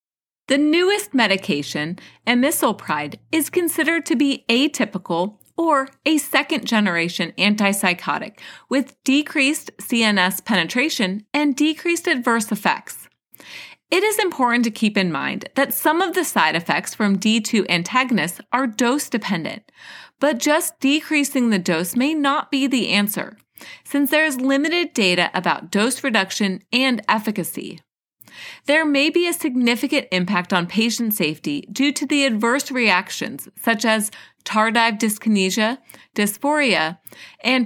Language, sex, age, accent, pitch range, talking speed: English, female, 30-49, American, 210-285 Hz, 125 wpm